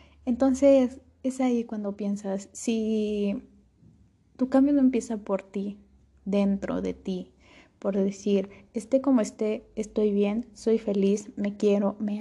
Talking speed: 135 wpm